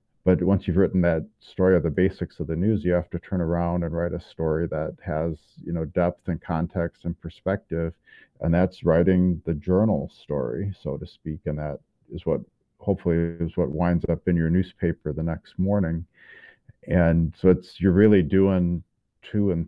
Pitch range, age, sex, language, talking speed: 85-100 Hz, 50-69, male, English, 190 wpm